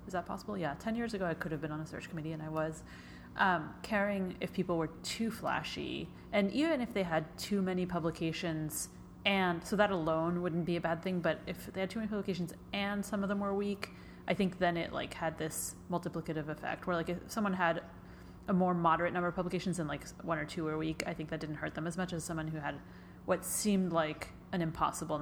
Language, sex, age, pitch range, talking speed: English, female, 30-49, 155-185 Hz, 235 wpm